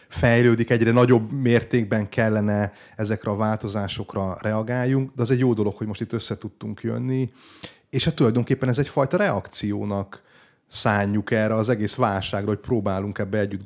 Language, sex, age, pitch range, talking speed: Hungarian, male, 30-49, 100-120 Hz, 155 wpm